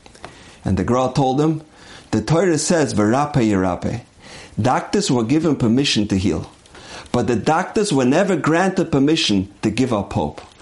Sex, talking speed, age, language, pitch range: male, 140 wpm, 50-69, English, 105-155 Hz